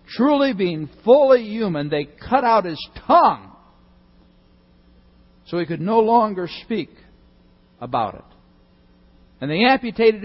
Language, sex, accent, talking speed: English, male, American, 115 wpm